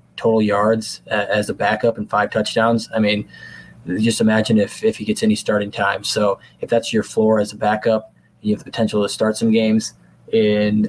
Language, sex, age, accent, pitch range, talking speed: English, male, 20-39, American, 105-115 Hz, 200 wpm